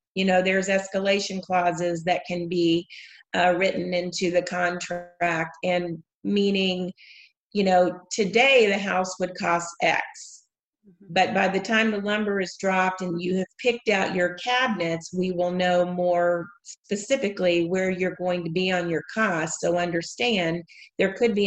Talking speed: 155 wpm